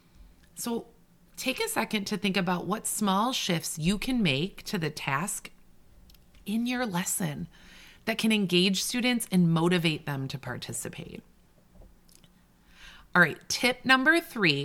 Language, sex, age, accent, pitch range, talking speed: English, female, 30-49, American, 155-215 Hz, 135 wpm